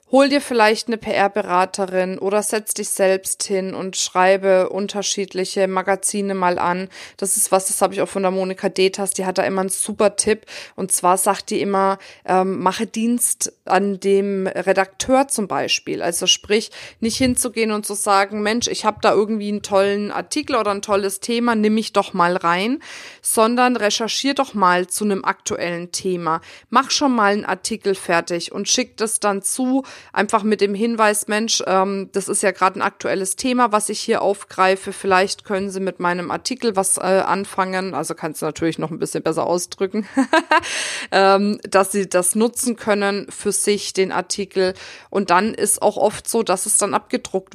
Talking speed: 185 wpm